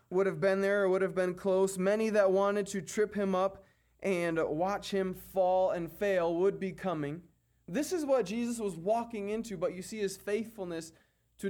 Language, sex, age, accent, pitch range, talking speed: English, male, 20-39, American, 130-185 Hz, 200 wpm